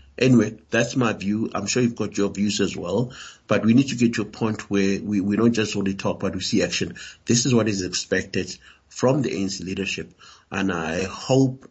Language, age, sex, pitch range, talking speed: English, 50-69, male, 100-115 Hz, 220 wpm